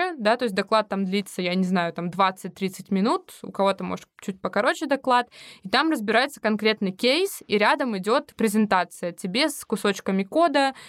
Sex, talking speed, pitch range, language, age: female, 170 wpm, 195-230 Hz, Russian, 20-39